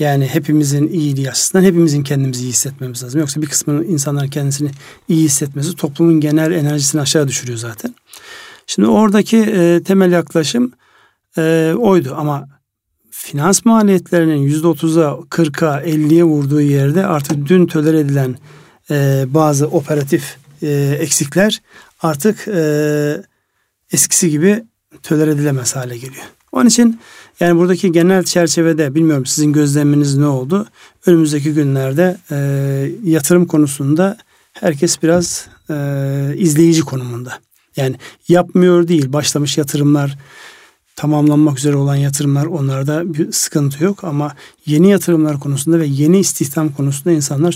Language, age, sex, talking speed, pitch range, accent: Turkish, 60-79, male, 120 wpm, 145-170 Hz, native